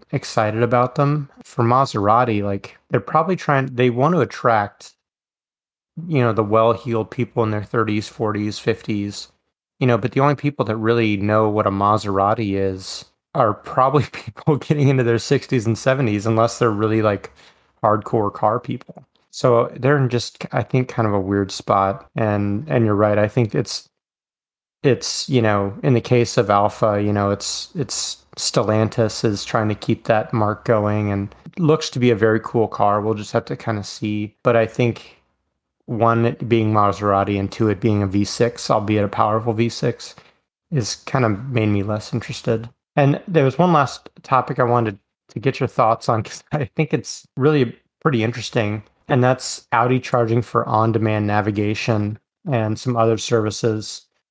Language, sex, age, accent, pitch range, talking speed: English, male, 30-49, American, 105-125 Hz, 180 wpm